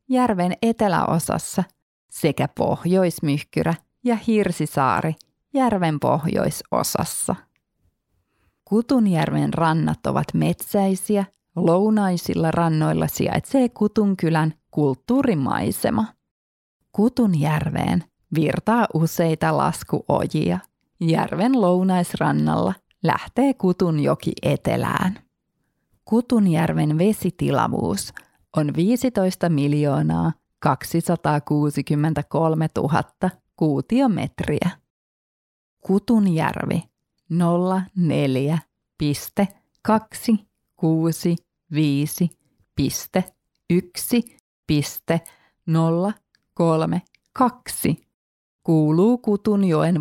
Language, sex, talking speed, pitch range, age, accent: Finnish, female, 45 wpm, 150-205 Hz, 30-49, native